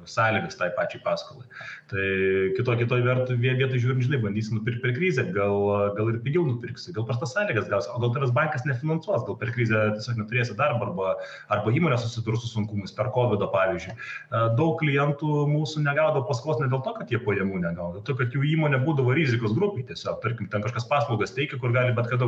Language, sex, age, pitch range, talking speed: English, male, 30-49, 105-130 Hz, 200 wpm